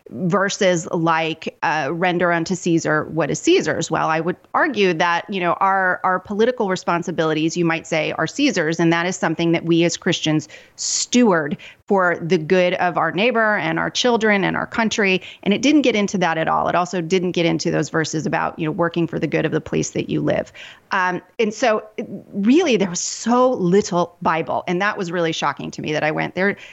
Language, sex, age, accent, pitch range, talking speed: English, female, 30-49, American, 165-200 Hz, 210 wpm